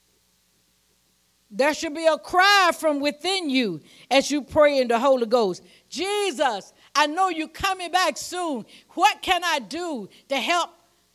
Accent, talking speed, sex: American, 150 wpm, female